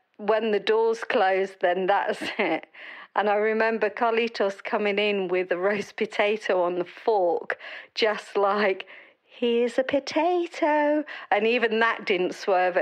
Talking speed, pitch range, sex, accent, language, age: 140 wpm, 205-260 Hz, female, British, English, 50-69